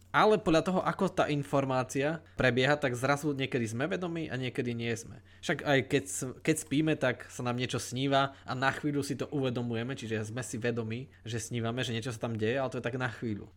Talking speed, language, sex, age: 215 wpm, Slovak, male, 20-39